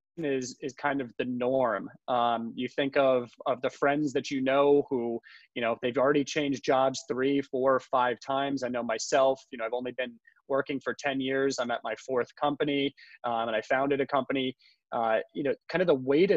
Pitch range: 125-150 Hz